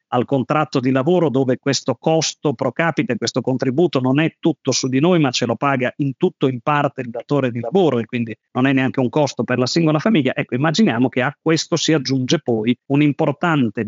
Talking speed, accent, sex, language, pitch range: 215 wpm, native, male, Italian, 120-145 Hz